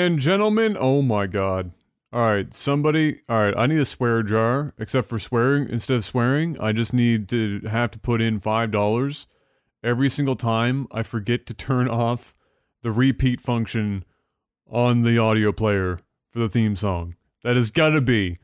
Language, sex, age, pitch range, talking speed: English, male, 30-49, 115-150 Hz, 170 wpm